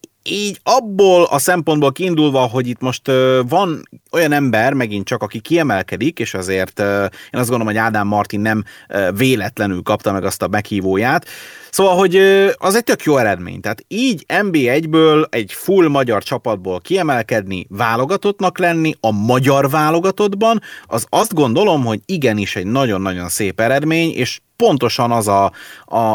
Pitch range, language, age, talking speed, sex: 110-170 Hz, Hungarian, 30-49, 150 wpm, male